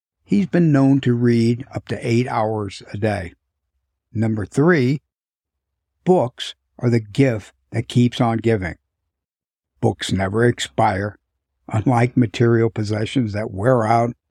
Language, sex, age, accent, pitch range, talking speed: English, male, 60-79, American, 100-130 Hz, 125 wpm